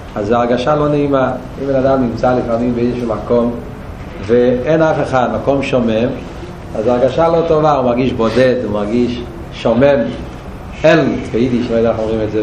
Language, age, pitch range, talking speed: Hebrew, 40-59, 125-165 Hz, 165 wpm